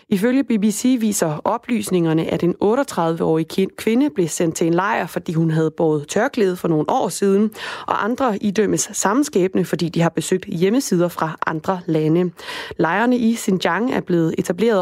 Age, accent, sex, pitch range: 20-39, native, female, 170-220 Hz